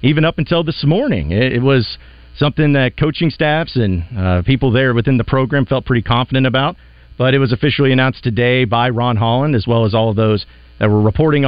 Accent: American